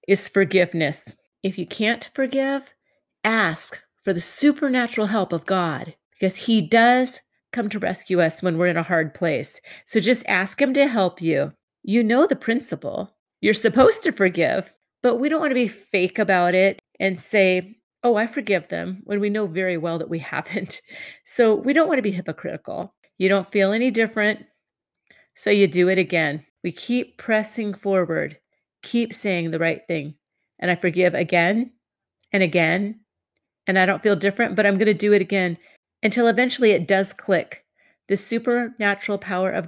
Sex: female